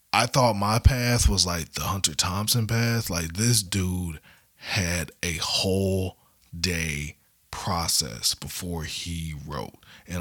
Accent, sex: American, male